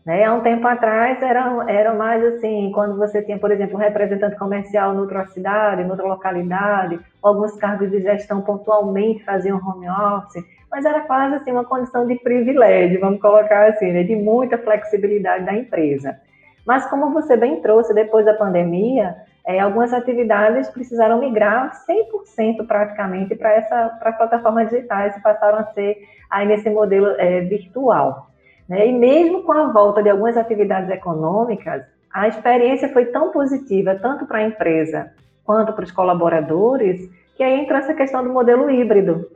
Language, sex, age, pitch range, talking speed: Portuguese, female, 20-39, 190-230 Hz, 160 wpm